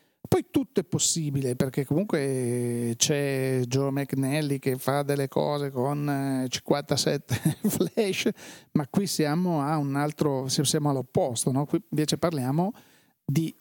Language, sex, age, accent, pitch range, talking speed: Italian, male, 40-59, native, 130-160 Hz, 130 wpm